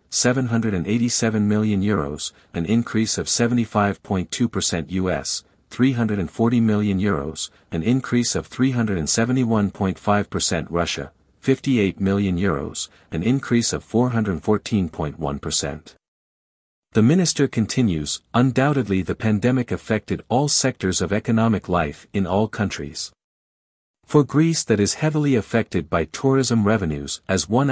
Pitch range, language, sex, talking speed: 90-120 Hz, English, male, 105 wpm